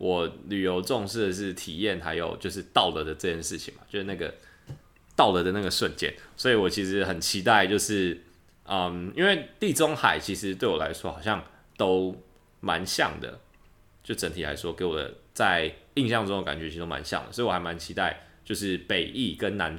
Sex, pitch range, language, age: male, 85-100 Hz, Chinese, 20-39